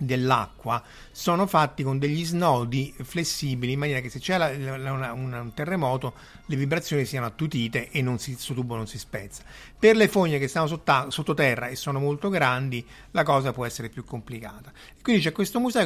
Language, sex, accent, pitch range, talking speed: Italian, male, native, 130-165 Hz, 165 wpm